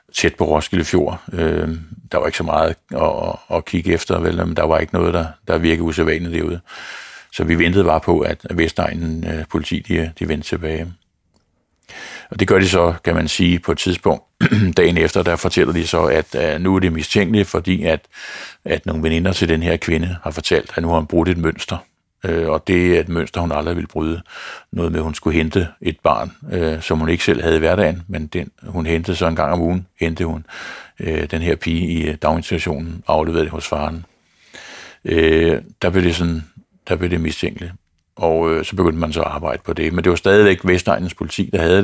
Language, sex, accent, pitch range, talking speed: Danish, male, native, 80-90 Hz, 205 wpm